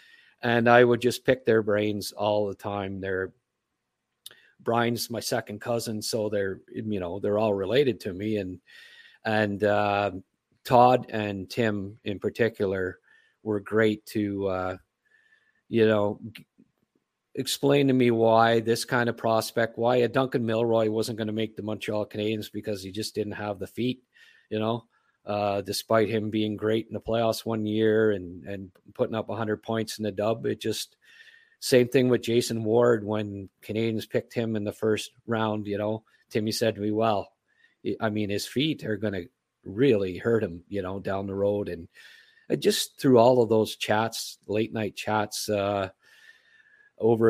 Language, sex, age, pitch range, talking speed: English, male, 50-69, 105-115 Hz, 175 wpm